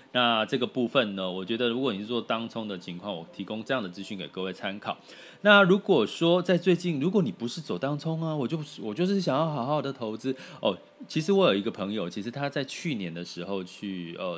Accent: native